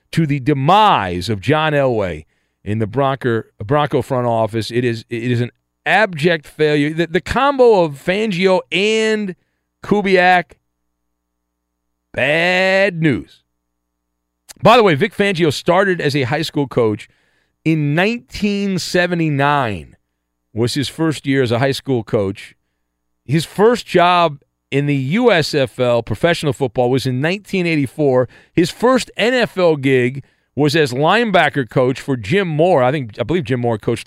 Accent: American